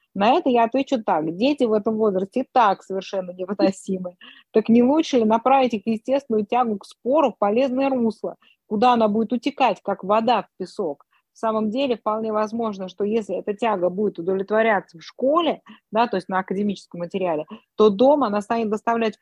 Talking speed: 180 wpm